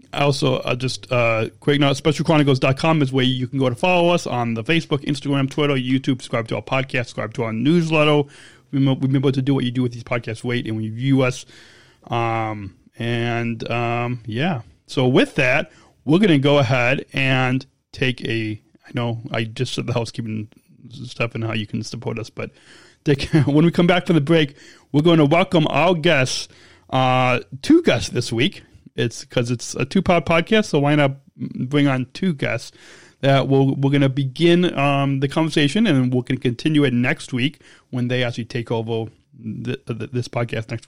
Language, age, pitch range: English, 30-49, 120-145 Hz